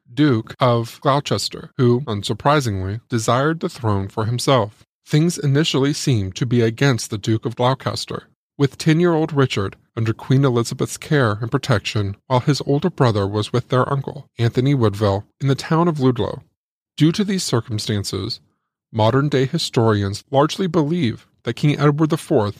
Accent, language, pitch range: American, English, 110-145 Hz